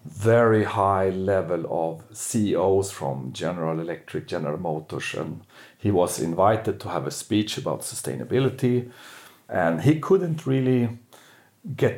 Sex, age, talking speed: male, 40-59, 125 wpm